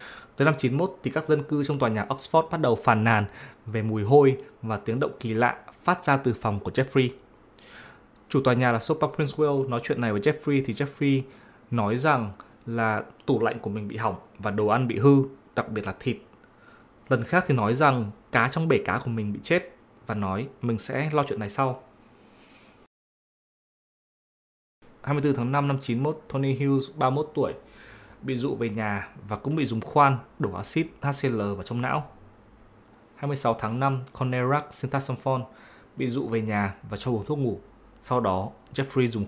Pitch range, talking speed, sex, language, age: 110-140 Hz, 190 wpm, male, Vietnamese, 20-39